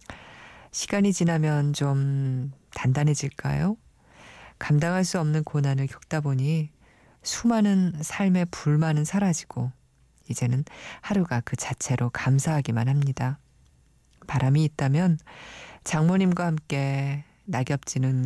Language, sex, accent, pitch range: Korean, female, native, 125-155 Hz